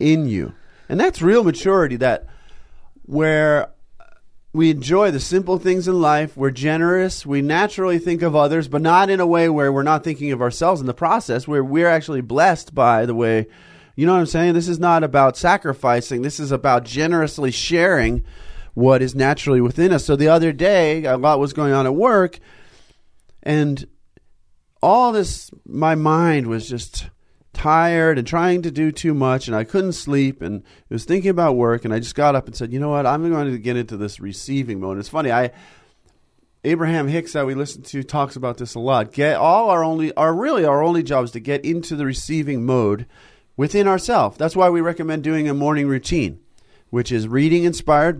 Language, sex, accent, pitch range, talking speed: English, male, American, 125-165 Hz, 200 wpm